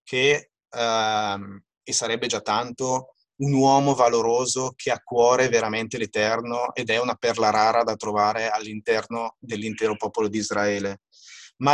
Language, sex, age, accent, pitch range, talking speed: Italian, male, 30-49, native, 110-140 Hz, 140 wpm